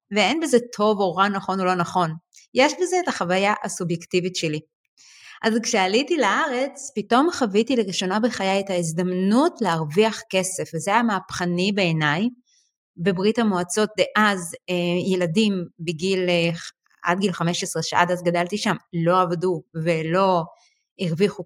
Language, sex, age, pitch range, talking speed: Hebrew, female, 30-49, 180-240 Hz, 130 wpm